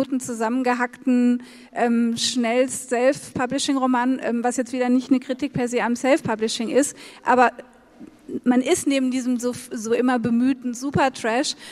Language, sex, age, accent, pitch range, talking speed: English, female, 30-49, German, 235-275 Hz, 135 wpm